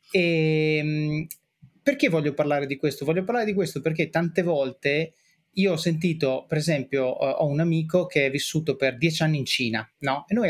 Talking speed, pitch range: 175 wpm, 140-175 Hz